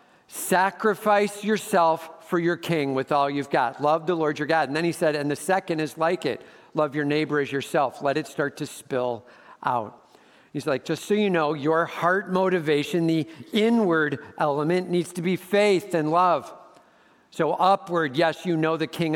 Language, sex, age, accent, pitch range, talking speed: English, male, 50-69, American, 140-165 Hz, 190 wpm